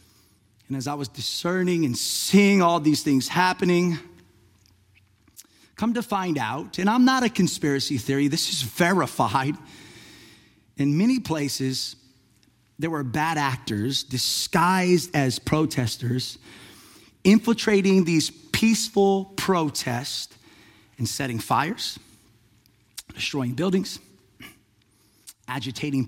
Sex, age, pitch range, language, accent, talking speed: male, 30-49, 110-160 Hz, English, American, 100 wpm